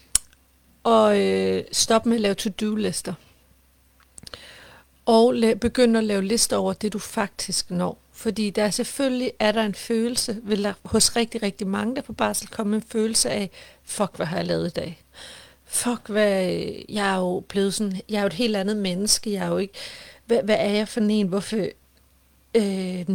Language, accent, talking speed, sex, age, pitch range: Danish, native, 185 wpm, female, 40-59, 185-220 Hz